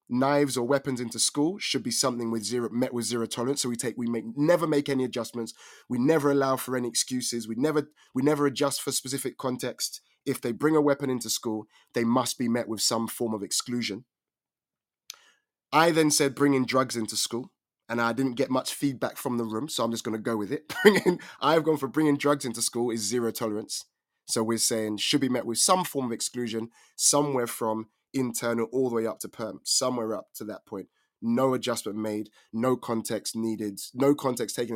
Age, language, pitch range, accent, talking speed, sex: 20-39, English, 115-135 Hz, British, 210 wpm, male